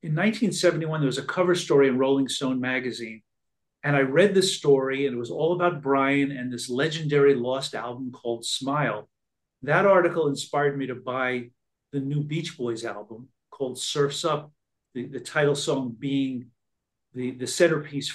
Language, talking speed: English, 170 wpm